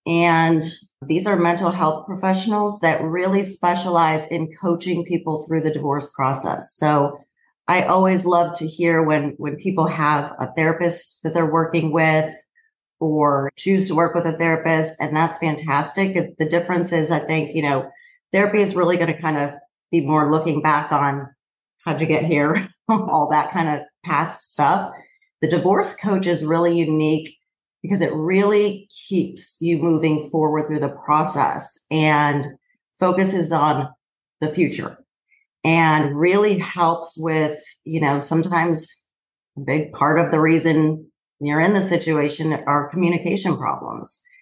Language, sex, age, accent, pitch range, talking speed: English, female, 40-59, American, 150-175 Hz, 150 wpm